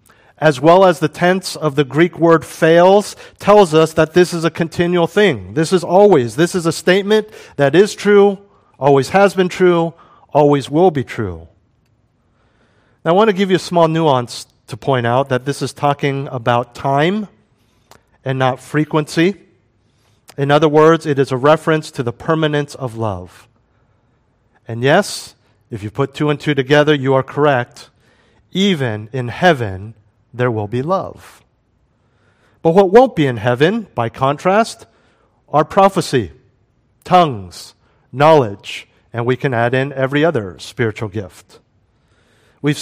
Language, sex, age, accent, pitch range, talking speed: English, male, 40-59, American, 120-160 Hz, 155 wpm